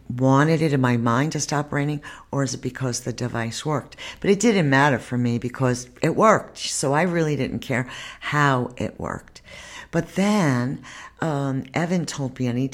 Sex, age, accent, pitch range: female, 60-79, American, 125-150 Hz